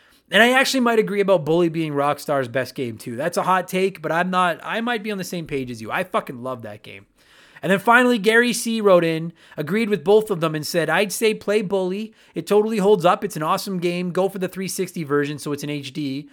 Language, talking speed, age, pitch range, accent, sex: English, 250 wpm, 30-49, 155-205 Hz, American, male